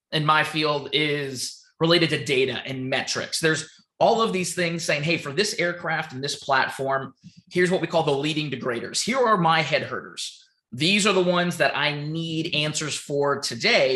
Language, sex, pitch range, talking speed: English, male, 140-175 Hz, 190 wpm